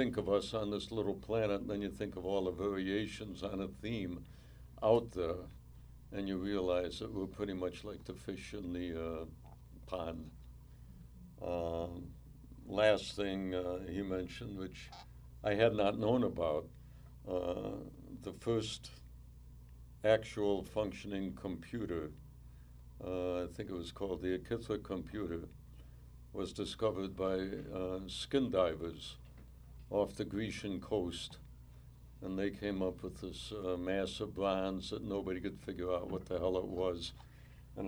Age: 60-79